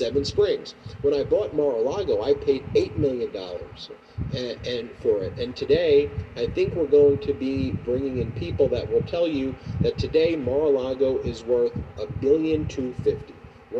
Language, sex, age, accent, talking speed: English, male, 40-59, American, 165 wpm